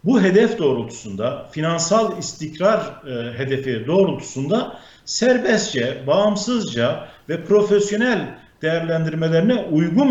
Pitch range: 145-205 Hz